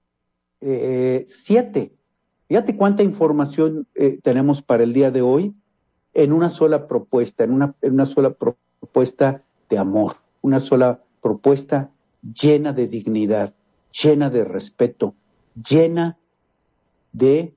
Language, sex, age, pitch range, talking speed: Spanish, male, 50-69, 125-170 Hz, 115 wpm